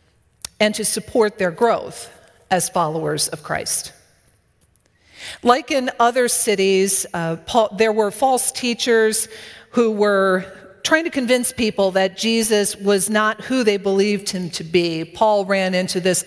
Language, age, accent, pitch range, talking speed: English, 40-59, American, 170-230 Hz, 140 wpm